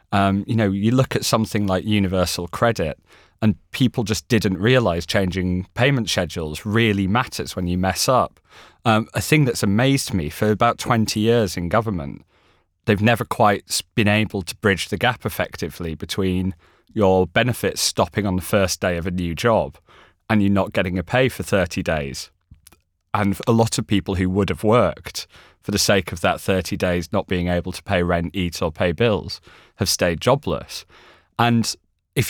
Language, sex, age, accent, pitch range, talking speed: English, male, 30-49, British, 90-110 Hz, 180 wpm